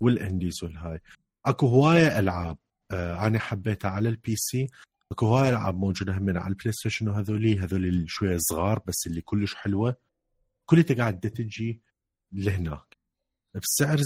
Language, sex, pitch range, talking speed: Arabic, male, 90-120 Hz, 135 wpm